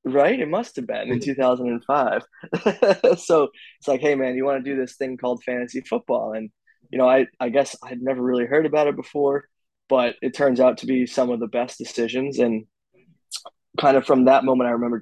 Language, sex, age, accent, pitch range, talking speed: English, male, 20-39, American, 120-130 Hz, 210 wpm